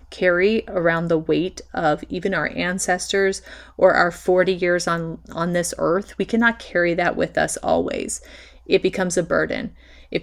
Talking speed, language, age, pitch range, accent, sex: 165 wpm, English, 30-49, 165-215 Hz, American, female